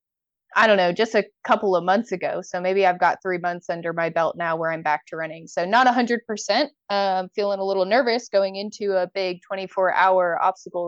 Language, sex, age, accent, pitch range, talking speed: English, female, 20-39, American, 180-220 Hz, 225 wpm